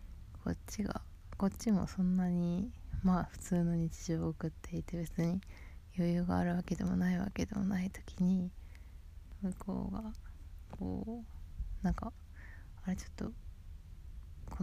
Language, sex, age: Japanese, female, 20-39